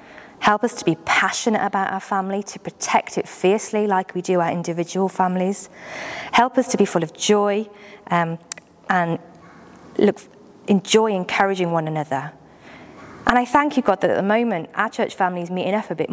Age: 30-49